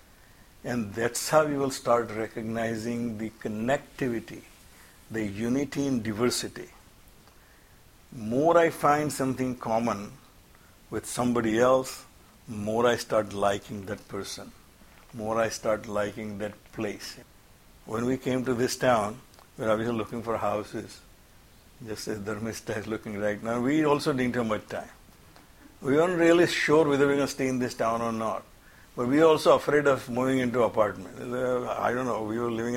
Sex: male